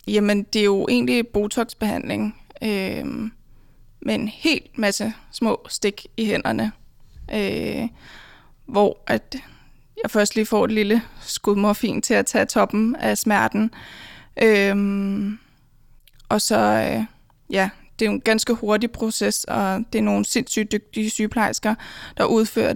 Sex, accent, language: female, native, Danish